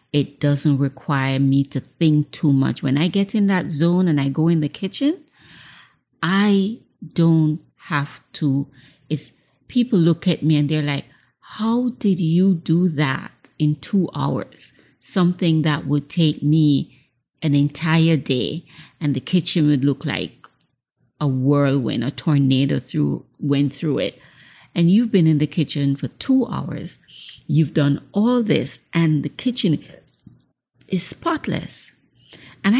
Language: English